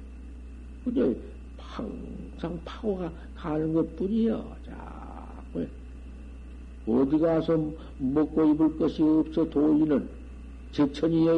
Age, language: 60-79, Korean